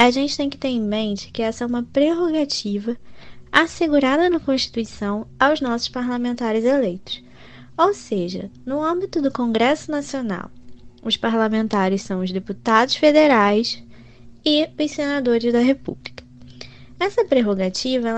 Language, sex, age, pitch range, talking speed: Portuguese, female, 20-39, 225-285 Hz, 130 wpm